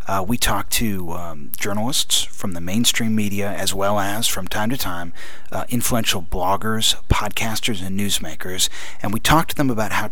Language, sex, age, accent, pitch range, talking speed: English, male, 40-59, American, 100-125 Hz, 180 wpm